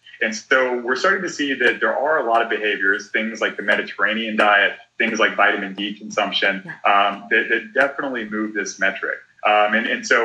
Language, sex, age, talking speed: English, male, 30-49, 200 wpm